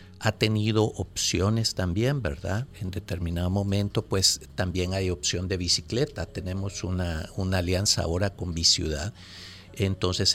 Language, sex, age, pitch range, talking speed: Spanish, male, 50-69, 90-115 Hz, 130 wpm